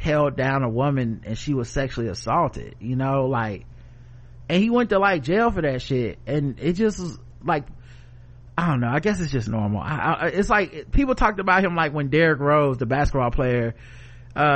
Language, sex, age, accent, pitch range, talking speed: English, male, 30-49, American, 120-160 Hz, 205 wpm